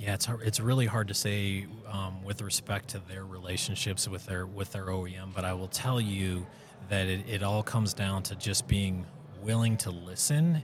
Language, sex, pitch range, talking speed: English, male, 95-115 Hz, 200 wpm